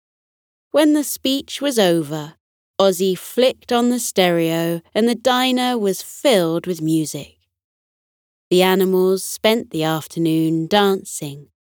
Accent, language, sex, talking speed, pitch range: British, English, female, 120 wpm, 155-215 Hz